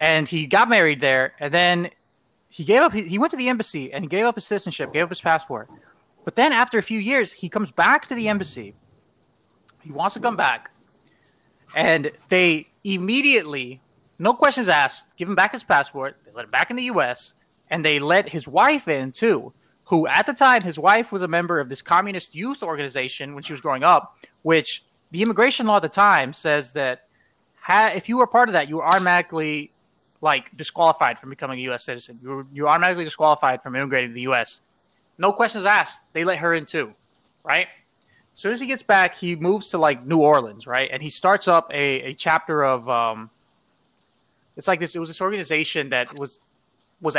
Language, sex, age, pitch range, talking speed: English, male, 20-39, 140-200 Hz, 205 wpm